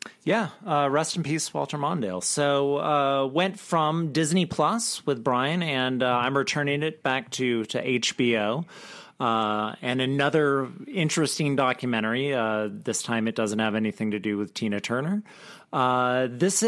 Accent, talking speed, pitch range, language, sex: American, 155 wpm, 110-145 Hz, English, male